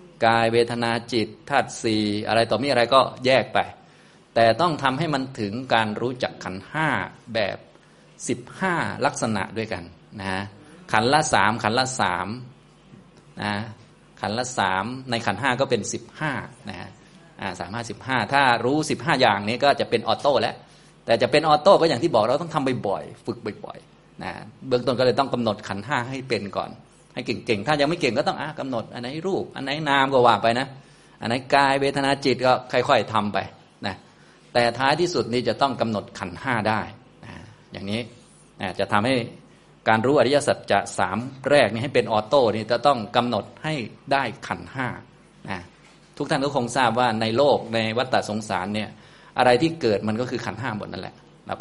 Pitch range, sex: 110-135 Hz, male